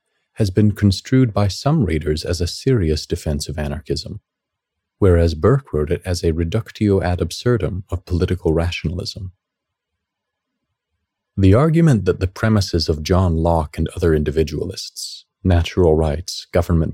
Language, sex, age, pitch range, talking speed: English, male, 40-59, 80-105 Hz, 135 wpm